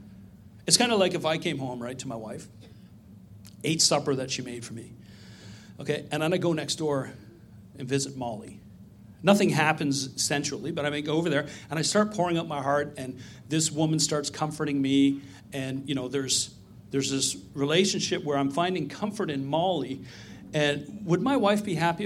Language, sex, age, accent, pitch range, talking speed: English, male, 40-59, American, 130-190 Hz, 190 wpm